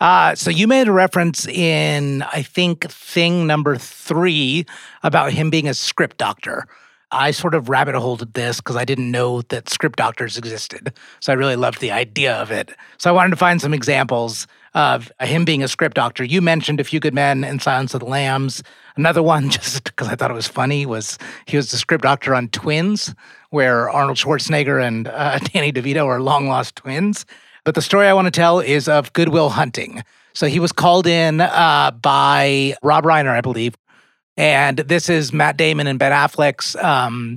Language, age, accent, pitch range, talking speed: English, 30-49, American, 130-165 Hz, 200 wpm